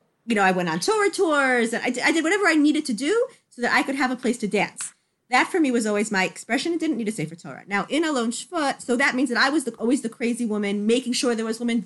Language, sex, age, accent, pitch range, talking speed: English, female, 30-49, American, 185-255 Hz, 305 wpm